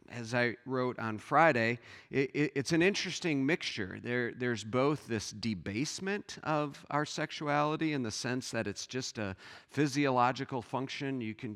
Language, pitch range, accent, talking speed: English, 115-145 Hz, American, 140 wpm